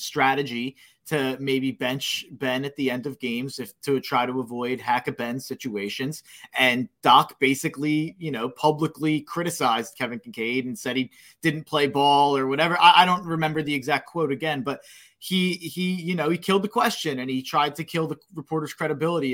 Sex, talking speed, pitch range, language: male, 185 wpm, 135-180 Hz, English